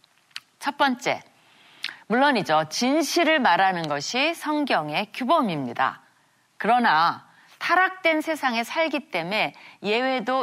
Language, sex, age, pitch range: Korean, female, 30-49, 180-270 Hz